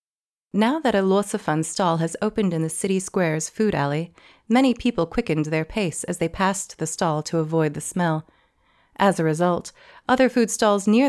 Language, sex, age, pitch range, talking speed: English, female, 30-49, 165-210 Hz, 185 wpm